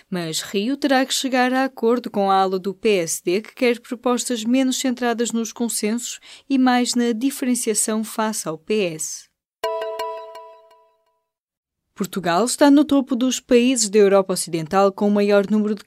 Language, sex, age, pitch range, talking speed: Portuguese, female, 20-39, 185-235 Hz, 150 wpm